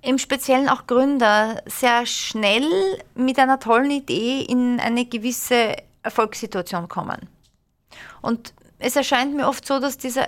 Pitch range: 215-265 Hz